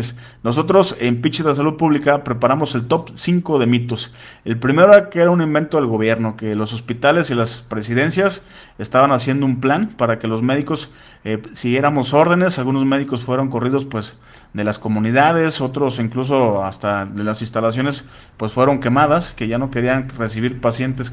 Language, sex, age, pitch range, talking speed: Spanish, male, 40-59, 115-150 Hz, 175 wpm